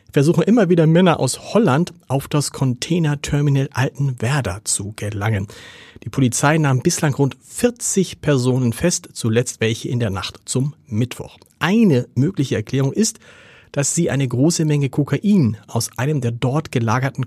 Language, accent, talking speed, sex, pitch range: German, German, 145 wpm, male, 120-155 Hz